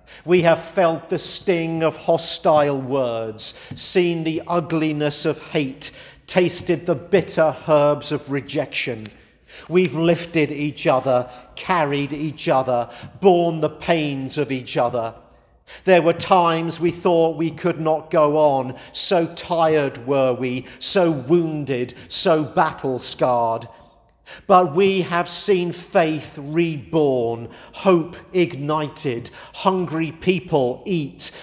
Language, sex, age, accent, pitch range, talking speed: English, male, 50-69, British, 140-175 Hz, 115 wpm